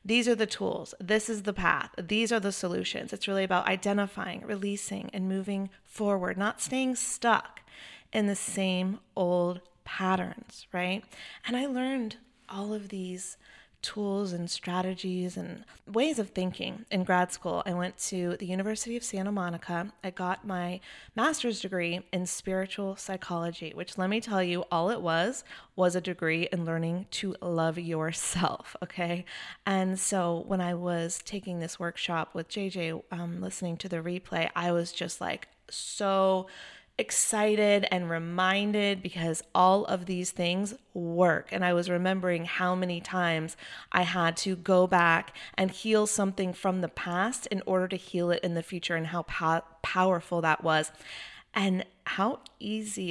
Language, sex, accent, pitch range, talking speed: English, female, American, 175-200 Hz, 160 wpm